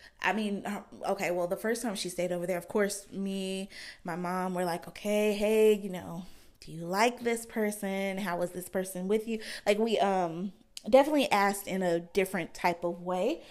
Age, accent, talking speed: 20-39, American, 195 wpm